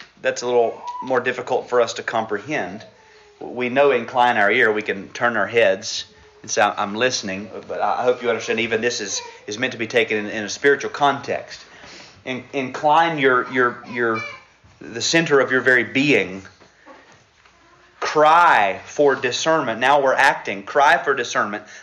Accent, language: American, English